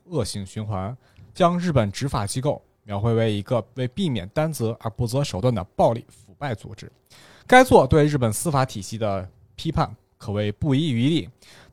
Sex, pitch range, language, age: male, 110-155 Hz, Chinese, 20-39